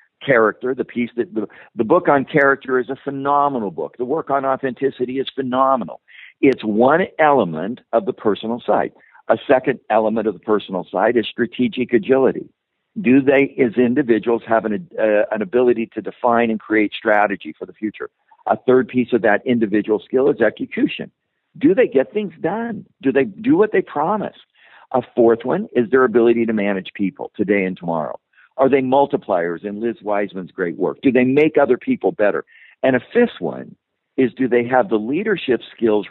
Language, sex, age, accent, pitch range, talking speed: English, male, 50-69, American, 110-140 Hz, 185 wpm